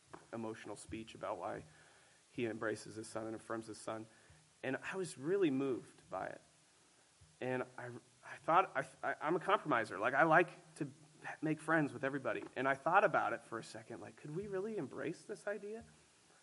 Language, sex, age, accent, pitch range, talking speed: English, male, 30-49, American, 125-165 Hz, 185 wpm